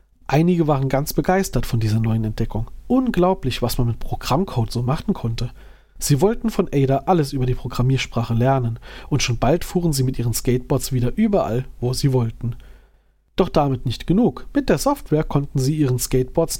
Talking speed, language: 175 wpm, German